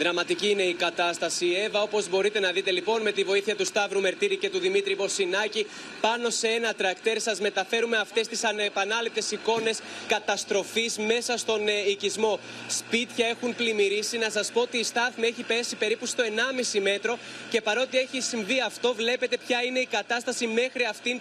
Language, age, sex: Greek, 20-39, male